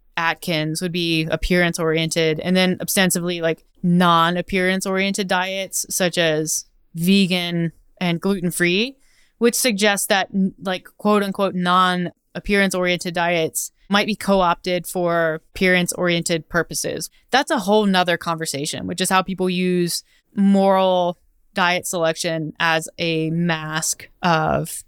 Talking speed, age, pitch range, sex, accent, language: 125 wpm, 20-39, 175-195 Hz, female, American, English